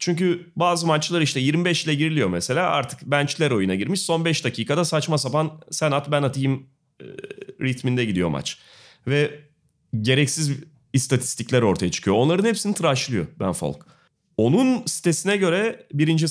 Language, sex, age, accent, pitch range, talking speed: Turkish, male, 30-49, native, 110-165 Hz, 140 wpm